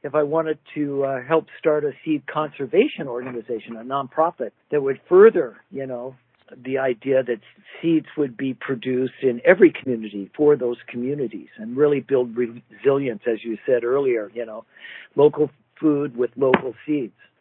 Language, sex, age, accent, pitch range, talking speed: English, male, 50-69, American, 125-160 Hz, 160 wpm